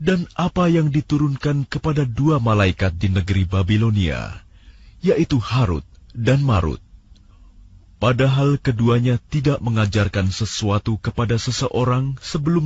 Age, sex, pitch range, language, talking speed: 40-59, male, 95-130 Hz, Indonesian, 105 wpm